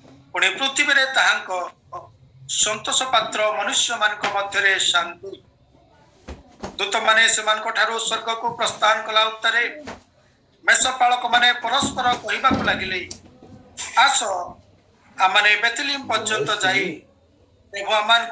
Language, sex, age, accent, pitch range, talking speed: Hindi, male, 50-69, native, 200-255 Hz, 55 wpm